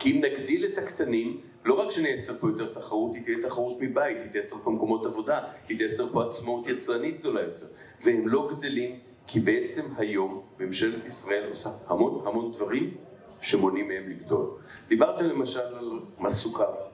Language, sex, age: Hebrew, male, 40-59